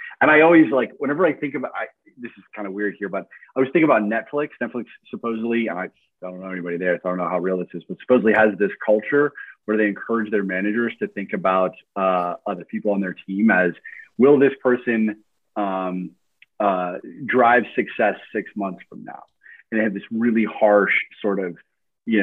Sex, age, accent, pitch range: male, 30-49, American, 95-120 Hz